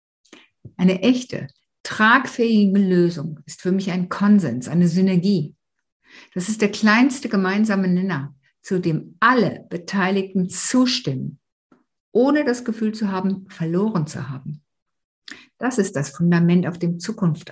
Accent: German